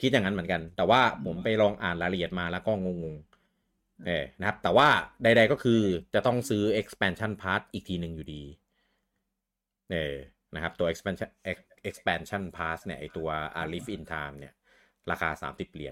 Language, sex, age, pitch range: Thai, male, 30-49, 80-100 Hz